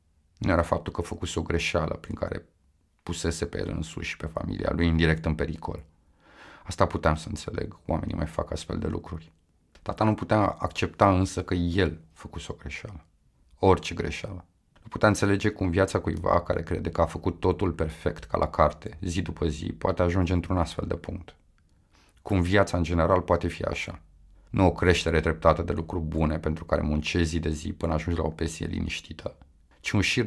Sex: male